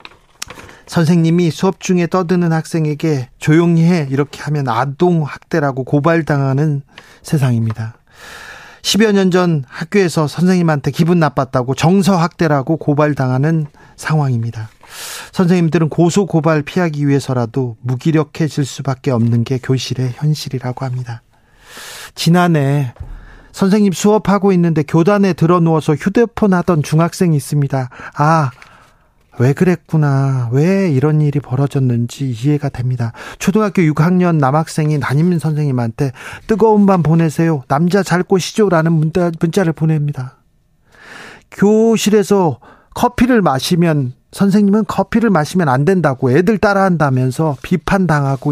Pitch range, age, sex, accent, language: 135-180 Hz, 40-59, male, native, Korean